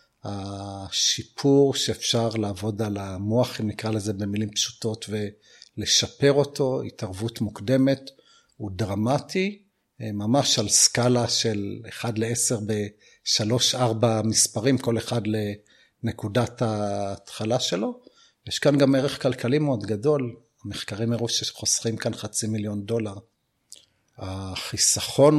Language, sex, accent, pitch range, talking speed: Hebrew, male, native, 110-125 Hz, 105 wpm